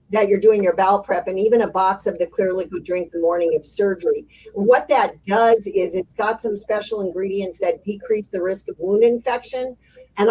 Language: English